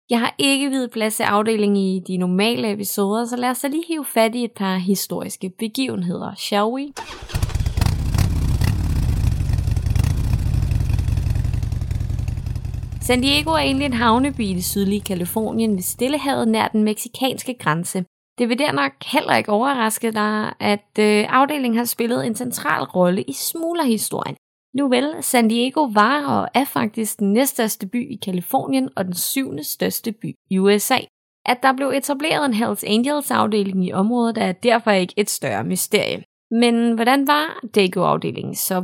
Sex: female